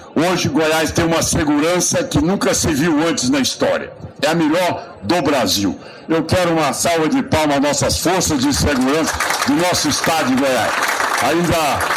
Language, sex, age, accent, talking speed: Portuguese, male, 60-79, Brazilian, 170 wpm